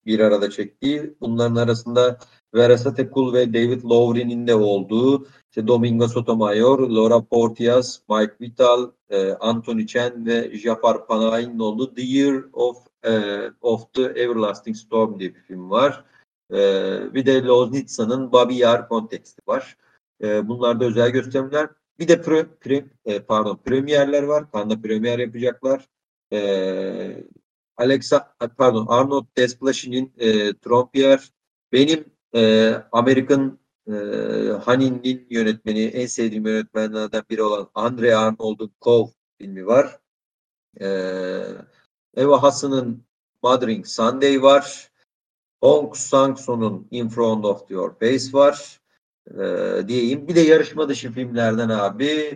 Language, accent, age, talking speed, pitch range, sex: Turkish, native, 50-69, 125 wpm, 110-135 Hz, male